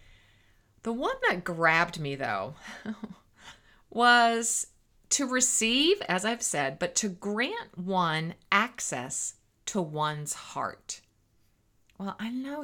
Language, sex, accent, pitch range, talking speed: English, female, American, 145-200 Hz, 110 wpm